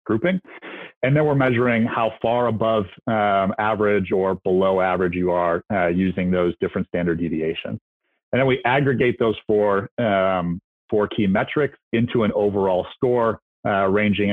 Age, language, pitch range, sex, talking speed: 40-59, English, 95-115 Hz, male, 155 wpm